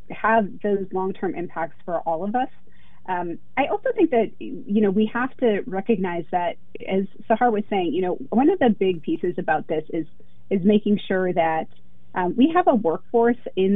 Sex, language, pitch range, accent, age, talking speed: female, English, 175-215 Hz, American, 30-49, 190 wpm